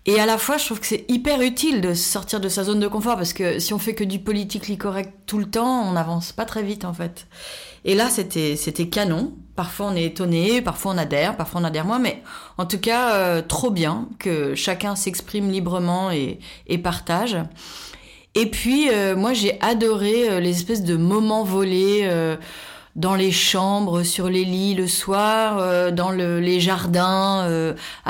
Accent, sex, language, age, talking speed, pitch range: French, female, French, 30-49, 200 wpm, 175-215 Hz